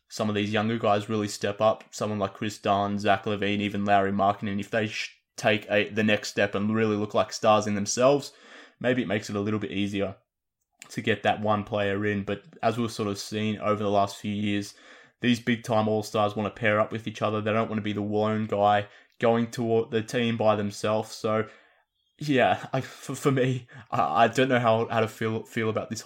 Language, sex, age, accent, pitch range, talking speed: English, male, 20-39, Australian, 105-115 Hz, 225 wpm